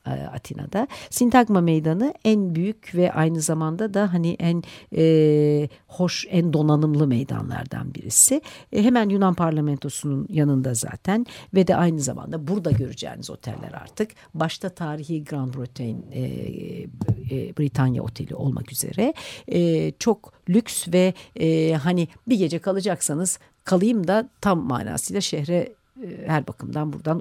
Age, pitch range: 60-79, 130-185 Hz